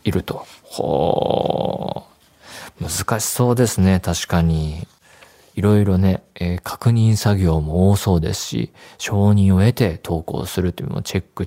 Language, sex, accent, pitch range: Japanese, male, native, 85-110 Hz